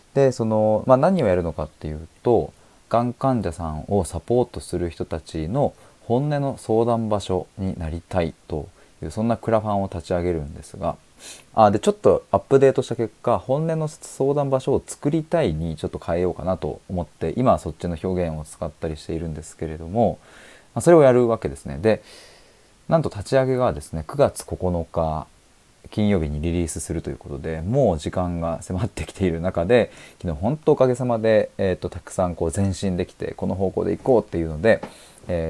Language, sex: Japanese, male